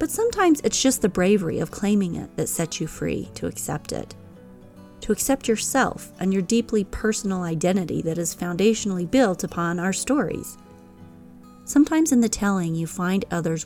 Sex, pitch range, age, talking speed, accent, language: female, 135-205 Hz, 30-49, 165 wpm, American, English